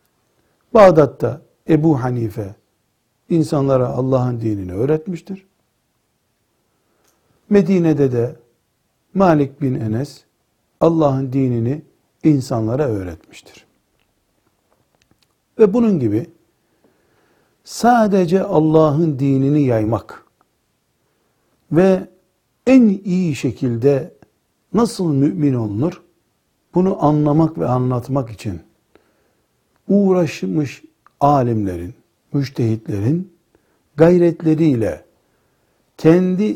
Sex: male